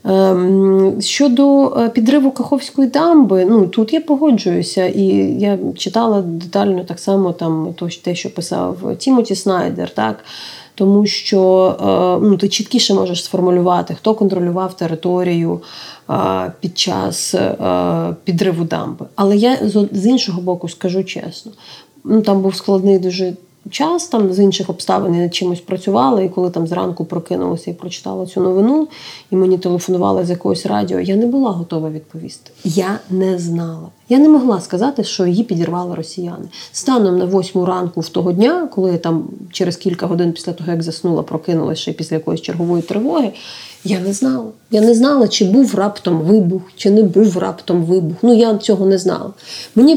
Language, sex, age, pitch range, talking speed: Ukrainian, female, 30-49, 180-220 Hz, 155 wpm